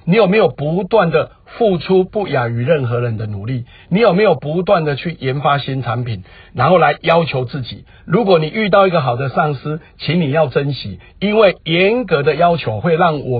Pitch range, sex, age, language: 130-185 Hz, male, 50-69, Chinese